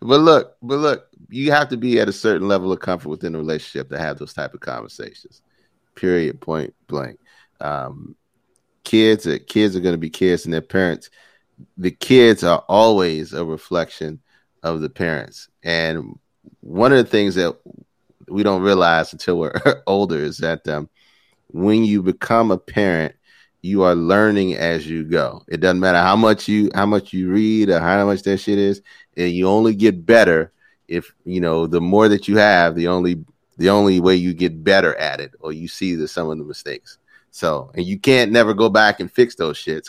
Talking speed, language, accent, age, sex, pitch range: 195 wpm, English, American, 30-49, male, 85-100 Hz